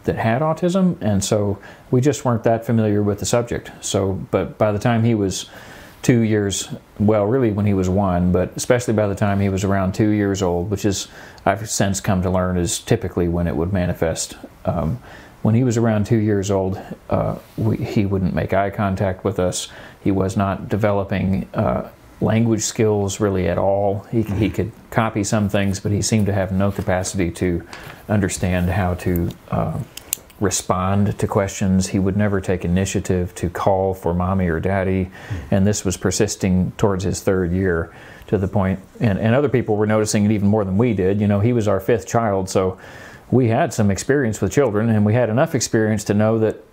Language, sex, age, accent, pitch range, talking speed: English, male, 40-59, American, 95-110 Hz, 200 wpm